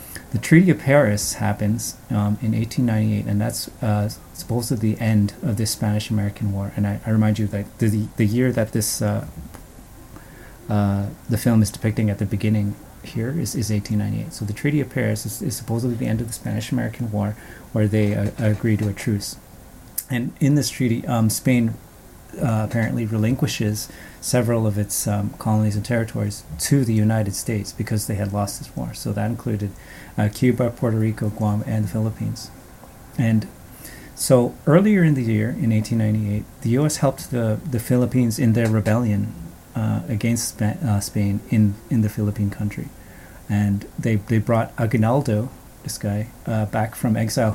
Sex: male